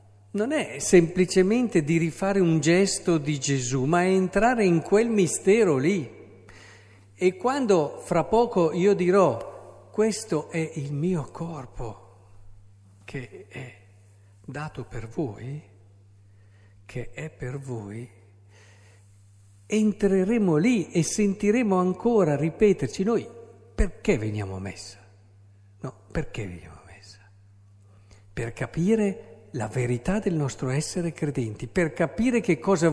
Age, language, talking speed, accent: 50-69, Italian, 115 wpm, native